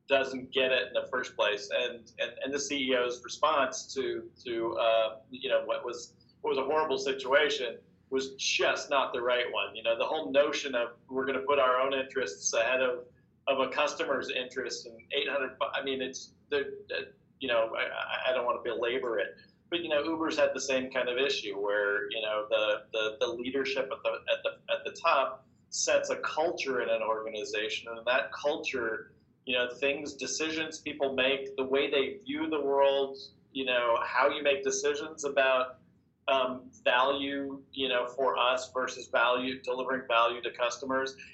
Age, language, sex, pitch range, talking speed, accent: 40-59, English, male, 125-145 Hz, 190 wpm, American